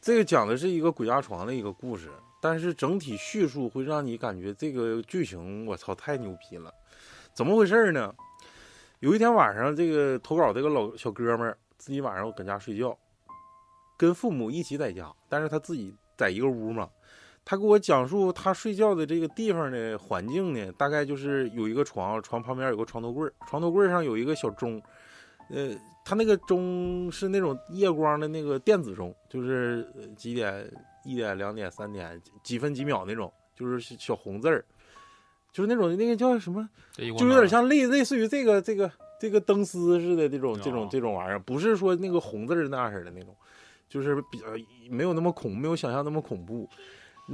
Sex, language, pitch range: male, Chinese, 120-190 Hz